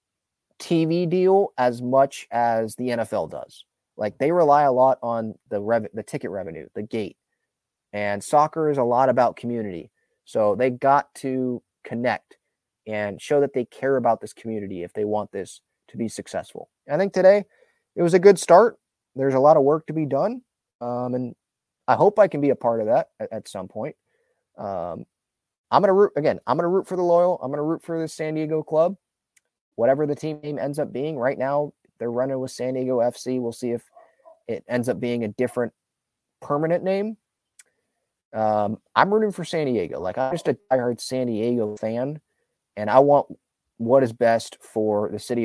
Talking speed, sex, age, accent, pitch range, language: 195 wpm, male, 20-39, American, 115-155 Hz, English